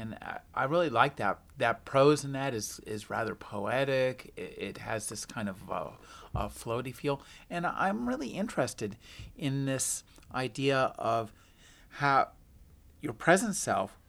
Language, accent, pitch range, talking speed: English, American, 110-145 Hz, 145 wpm